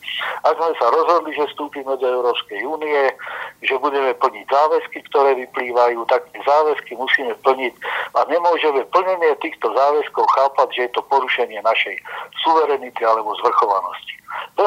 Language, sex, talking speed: Slovak, male, 140 wpm